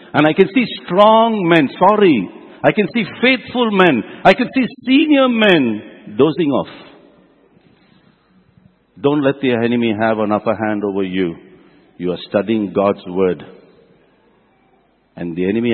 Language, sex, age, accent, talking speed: English, male, 60-79, Indian, 140 wpm